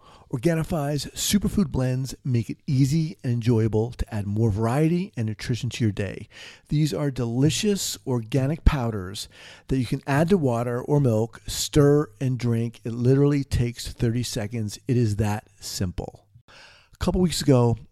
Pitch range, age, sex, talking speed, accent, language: 110-145 Hz, 40-59, male, 155 wpm, American, English